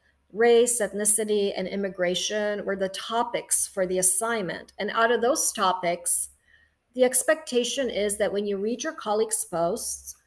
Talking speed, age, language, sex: 145 wpm, 40-59, English, female